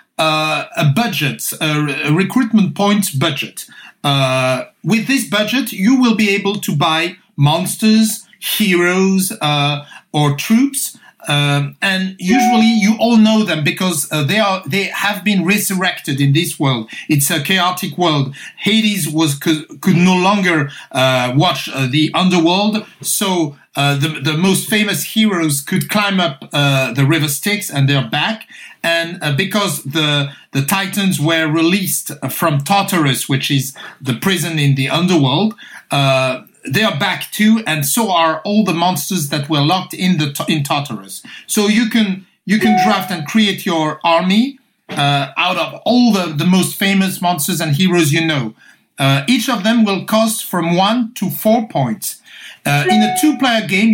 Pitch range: 150-210 Hz